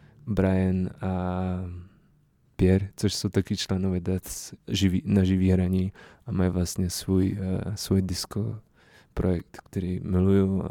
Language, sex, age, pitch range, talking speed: Czech, male, 20-39, 95-100 Hz, 110 wpm